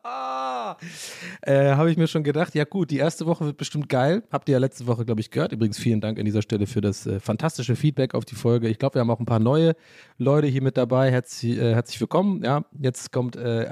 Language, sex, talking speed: German, male, 250 wpm